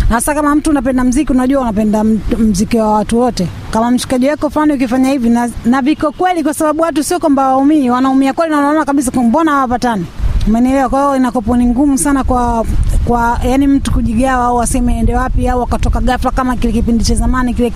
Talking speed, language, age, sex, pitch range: 185 wpm, Swahili, 30-49, female, 245-295 Hz